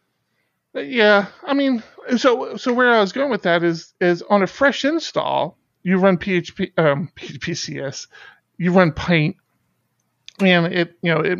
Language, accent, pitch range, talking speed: English, American, 170-230 Hz, 160 wpm